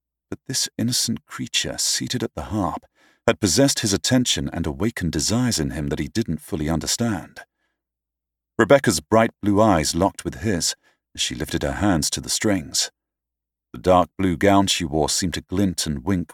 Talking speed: 175 wpm